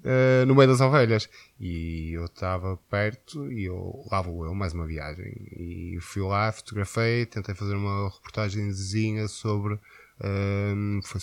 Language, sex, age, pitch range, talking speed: Portuguese, male, 20-39, 95-120 Hz, 155 wpm